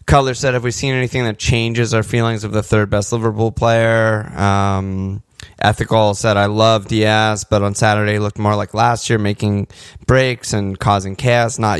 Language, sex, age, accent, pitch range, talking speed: English, male, 20-39, American, 100-115 Hz, 185 wpm